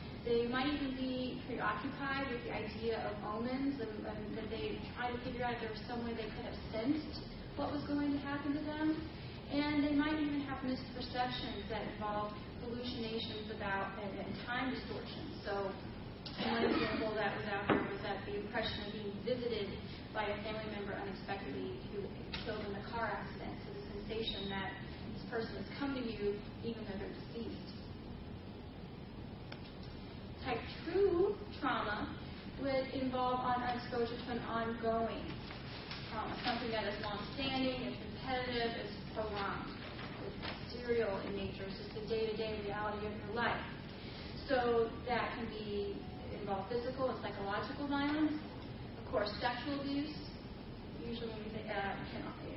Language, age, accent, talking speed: English, 30-49, American, 160 wpm